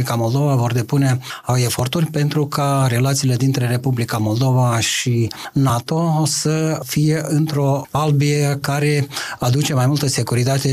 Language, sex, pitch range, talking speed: Romanian, male, 130-155 Hz, 115 wpm